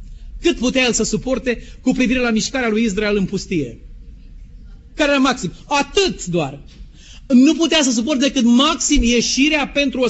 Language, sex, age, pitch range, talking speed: Romanian, male, 40-59, 220-285 Hz, 160 wpm